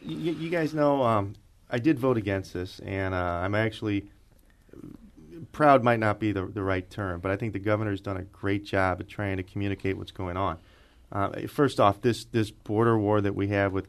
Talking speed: 205 wpm